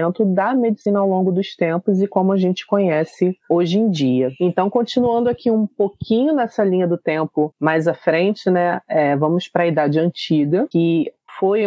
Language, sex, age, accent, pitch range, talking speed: Portuguese, female, 30-49, Brazilian, 160-210 Hz, 180 wpm